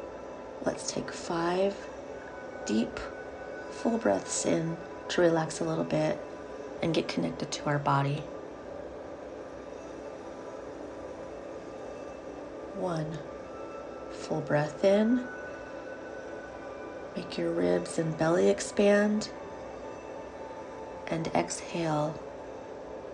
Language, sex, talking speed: English, female, 80 wpm